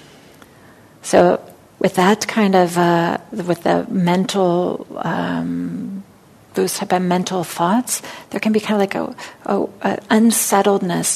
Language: English